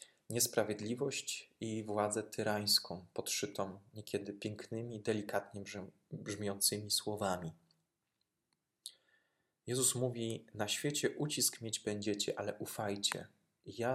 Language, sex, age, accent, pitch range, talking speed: Polish, male, 20-39, native, 105-120 Hz, 95 wpm